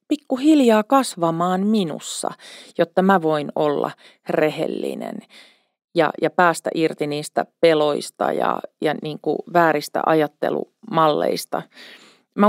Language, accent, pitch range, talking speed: Finnish, native, 160-230 Hz, 95 wpm